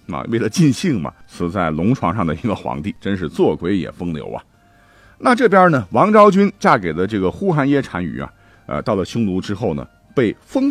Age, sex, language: 50-69, male, Chinese